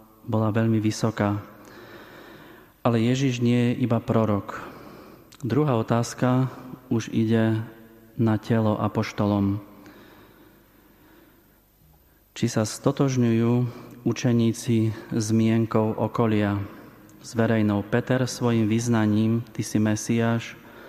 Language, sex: Slovak, male